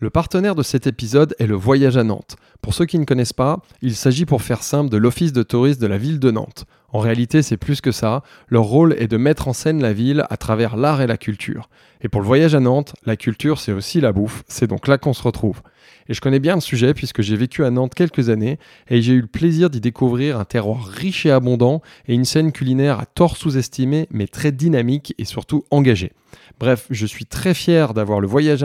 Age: 20-39